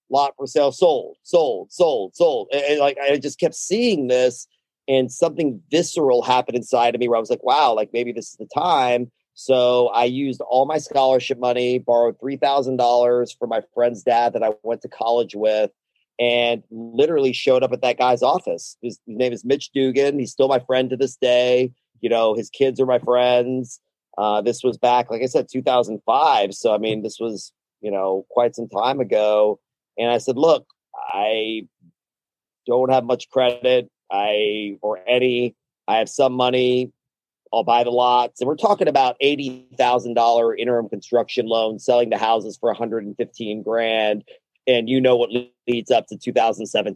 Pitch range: 115-135 Hz